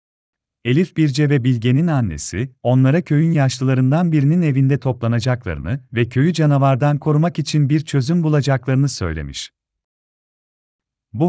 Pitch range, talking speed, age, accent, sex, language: 95-150 Hz, 110 wpm, 40-59, native, male, Turkish